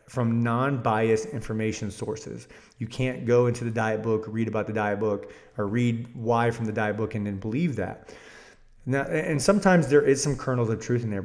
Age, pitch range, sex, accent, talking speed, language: 30-49, 110-130 Hz, male, American, 205 wpm, English